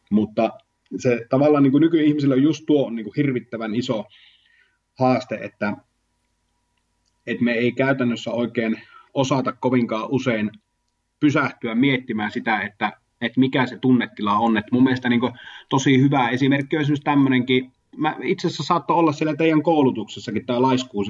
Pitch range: 115-135 Hz